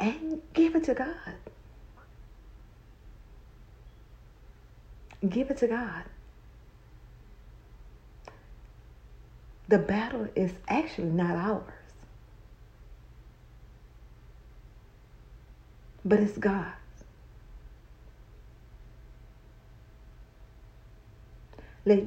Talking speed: 50 wpm